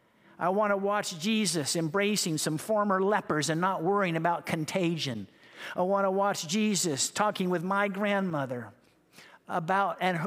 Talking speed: 135 wpm